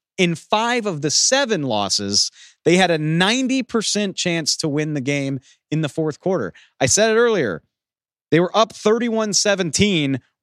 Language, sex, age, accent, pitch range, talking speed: English, male, 30-49, American, 125-185 Hz, 155 wpm